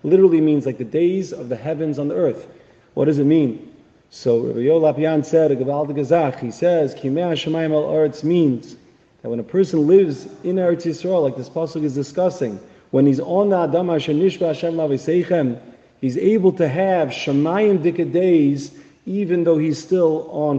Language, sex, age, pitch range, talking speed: English, male, 40-59, 135-170 Hz, 155 wpm